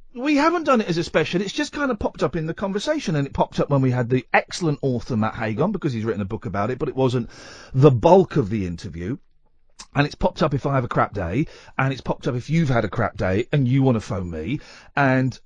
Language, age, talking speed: English, 40-59, 270 wpm